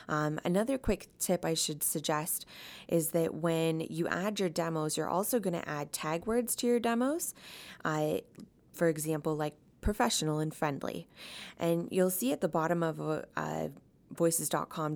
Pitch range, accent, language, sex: 155-195 Hz, American, English, female